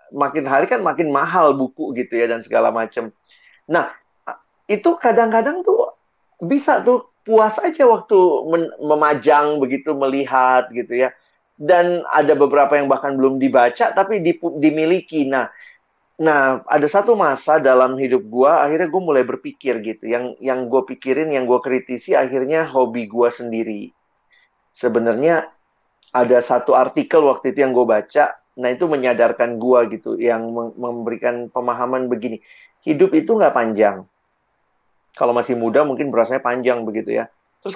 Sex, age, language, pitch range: male, 30-49, Indonesian, 125-165 Hz